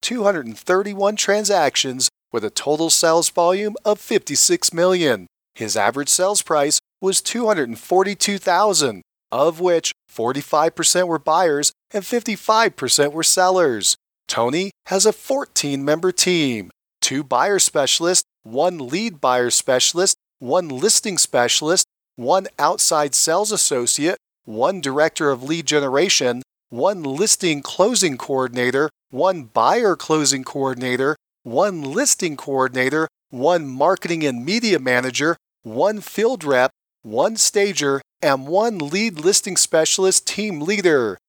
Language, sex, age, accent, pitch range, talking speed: English, male, 40-59, American, 140-200 Hz, 115 wpm